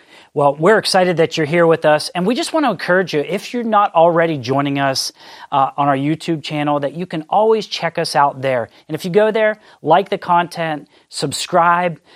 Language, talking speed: English, 210 wpm